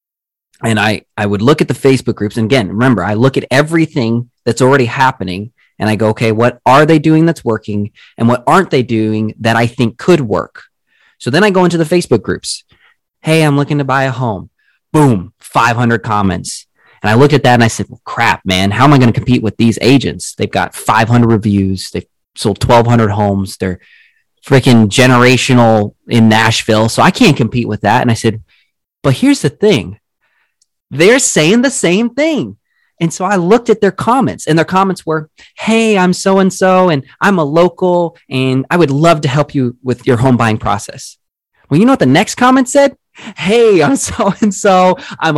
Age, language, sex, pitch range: 30-49, English, male, 115-170 Hz